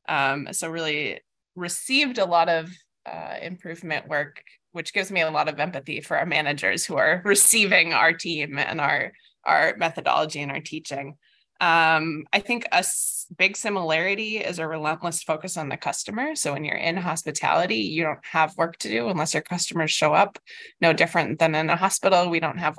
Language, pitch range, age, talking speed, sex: English, 155-190 Hz, 20-39, 185 wpm, female